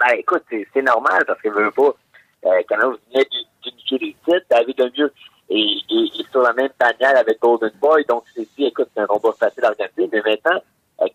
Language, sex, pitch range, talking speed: French, male, 115-165 Hz, 215 wpm